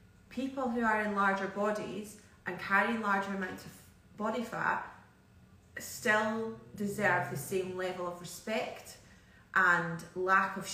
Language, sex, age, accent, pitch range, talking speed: English, female, 30-49, British, 175-210 Hz, 130 wpm